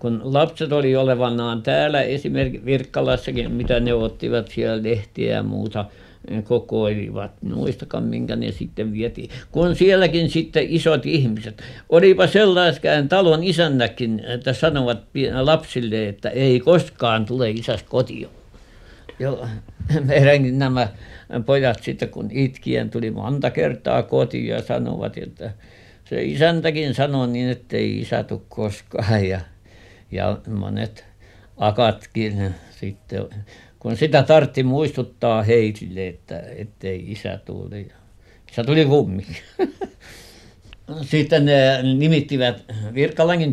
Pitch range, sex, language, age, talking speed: 105-135 Hz, male, Finnish, 60-79, 110 wpm